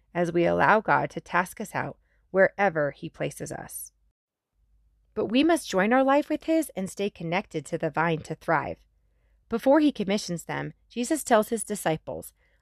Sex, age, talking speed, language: female, 30-49, 170 wpm, English